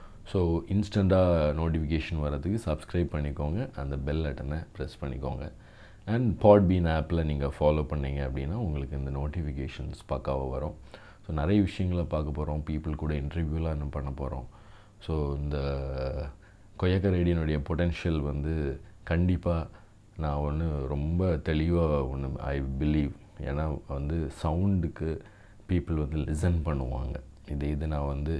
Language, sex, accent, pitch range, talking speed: English, male, Indian, 70-85 Hz, 70 wpm